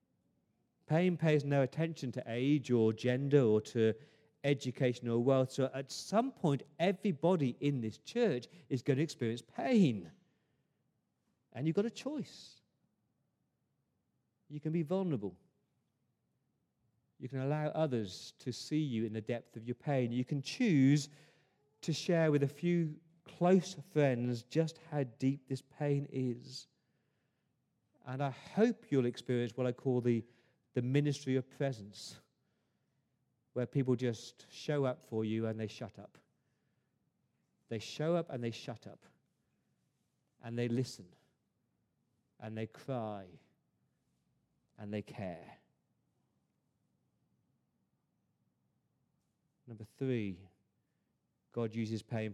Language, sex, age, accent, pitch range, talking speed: English, male, 40-59, British, 115-145 Hz, 125 wpm